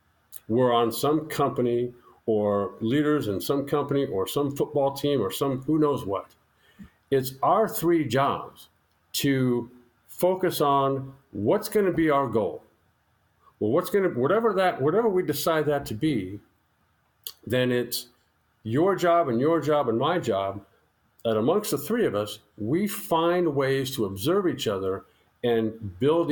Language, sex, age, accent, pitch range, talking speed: English, male, 50-69, American, 115-150 Hz, 150 wpm